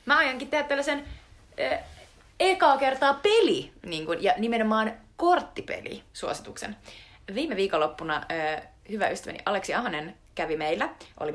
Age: 20-39